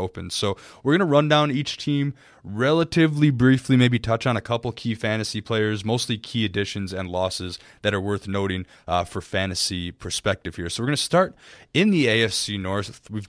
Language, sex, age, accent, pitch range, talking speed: English, male, 20-39, American, 95-120 Hz, 195 wpm